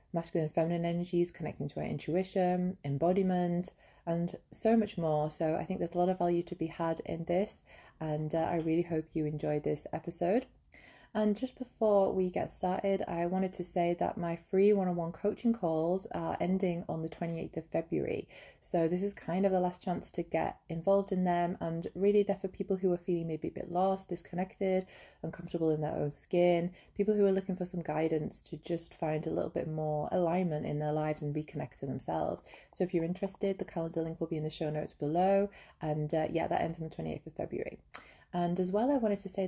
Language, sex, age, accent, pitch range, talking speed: English, female, 20-39, British, 165-195 Hz, 215 wpm